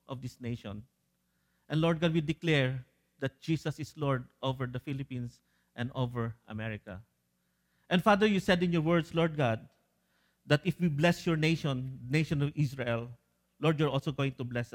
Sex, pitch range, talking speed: male, 110-185 Hz, 170 wpm